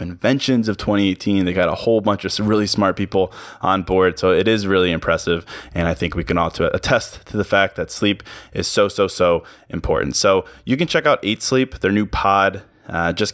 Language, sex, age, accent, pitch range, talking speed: English, male, 20-39, American, 90-110 Hz, 215 wpm